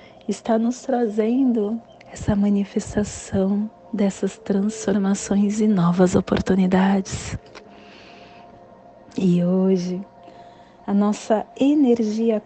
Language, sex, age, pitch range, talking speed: Portuguese, female, 30-49, 185-235 Hz, 70 wpm